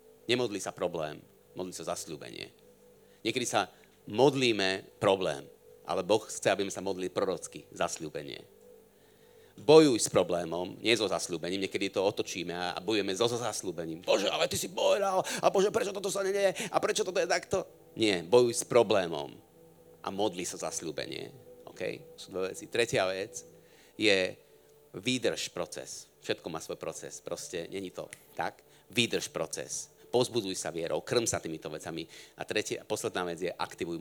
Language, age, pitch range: Slovak, 40-59, 100-165 Hz